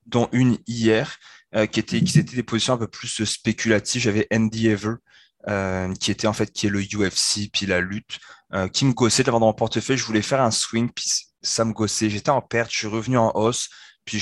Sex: male